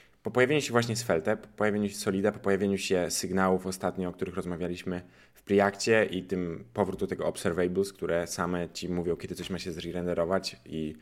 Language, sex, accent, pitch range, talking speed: Polish, male, native, 95-125 Hz, 190 wpm